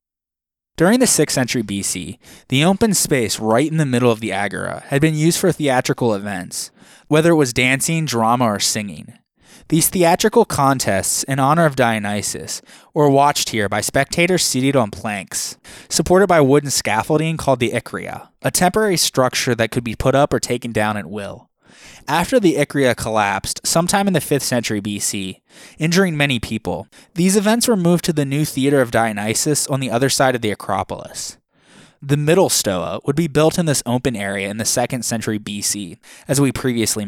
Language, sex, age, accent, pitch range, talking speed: English, male, 20-39, American, 110-155 Hz, 180 wpm